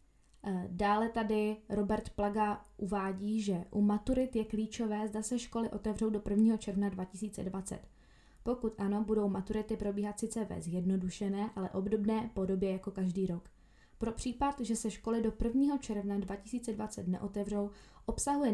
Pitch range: 195-230 Hz